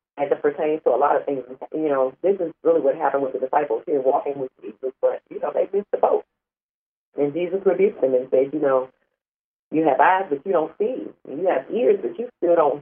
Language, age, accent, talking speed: English, 40-59, American, 245 wpm